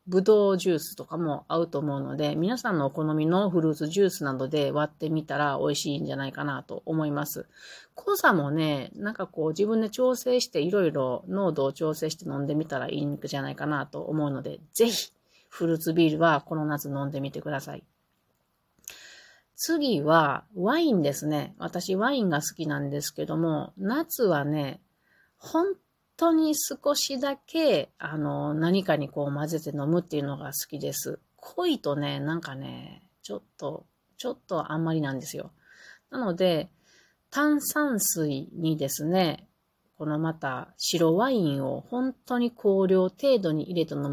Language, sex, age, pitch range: Japanese, female, 30-49, 145-200 Hz